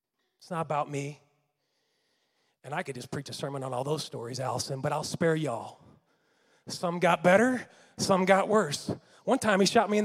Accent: American